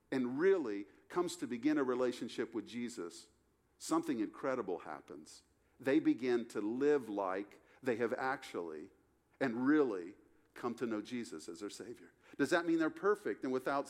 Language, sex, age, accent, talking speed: English, male, 50-69, American, 155 wpm